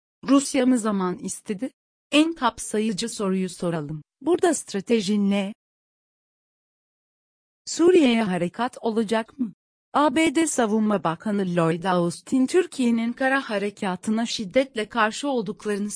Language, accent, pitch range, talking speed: Turkish, native, 195-255 Hz, 100 wpm